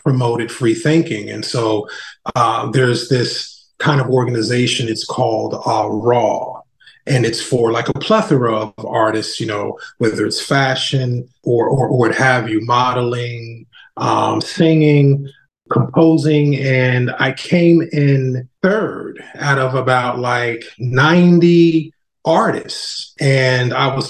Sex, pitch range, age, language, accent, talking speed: male, 115-140 Hz, 30-49, English, American, 130 wpm